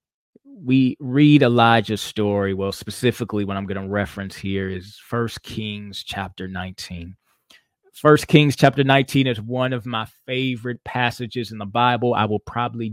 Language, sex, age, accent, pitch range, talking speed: English, male, 20-39, American, 100-130 Hz, 155 wpm